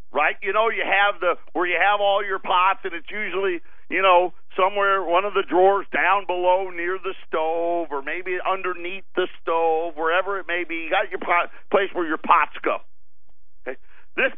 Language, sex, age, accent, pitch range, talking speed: English, male, 50-69, American, 175-230 Hz, 190 wpm